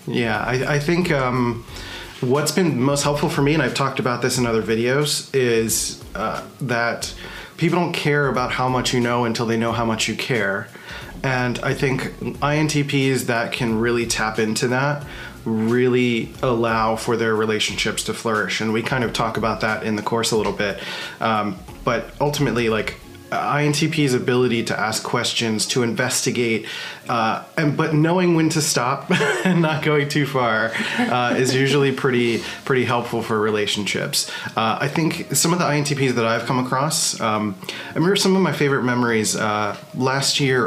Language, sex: English, male